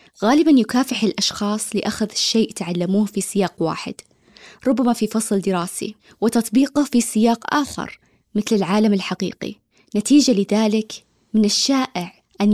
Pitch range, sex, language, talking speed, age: 200-240 Hz, female, Arabic, 120 wpm, 20-39